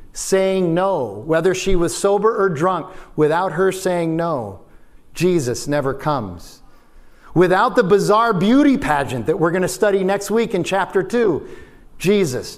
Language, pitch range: English, 140-185 Hz